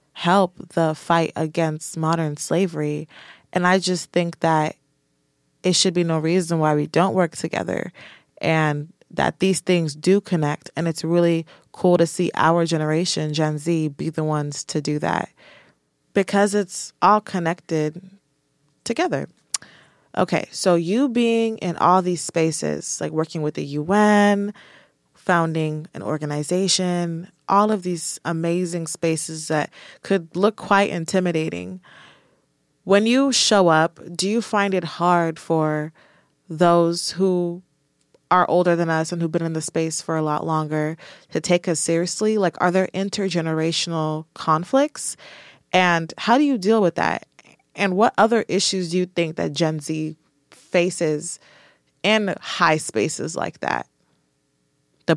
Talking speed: 145 wpm